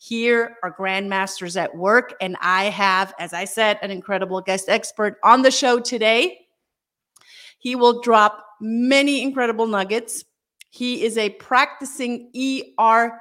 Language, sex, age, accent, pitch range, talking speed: English, female, 40-59, American, 190-235 Hz, 135 wpm